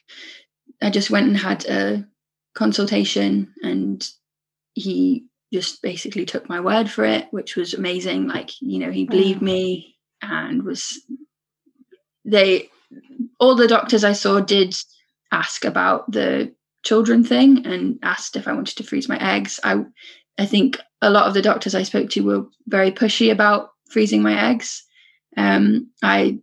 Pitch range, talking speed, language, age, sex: 165-260 Hz, 155 wpm, English, 10-29, female